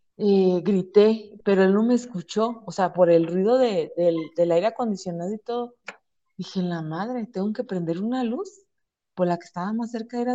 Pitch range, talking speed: 190-280 Hz, 210 wpm